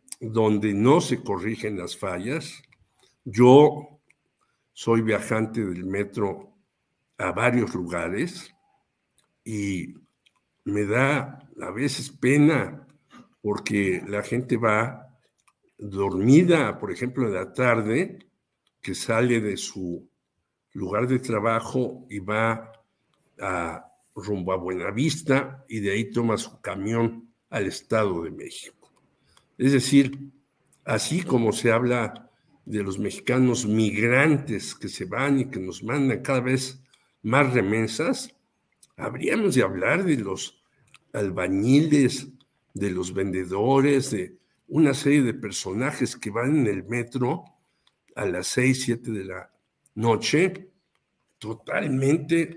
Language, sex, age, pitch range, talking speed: Spanish, male, 60-79, 105-140 Hz, 115 wpm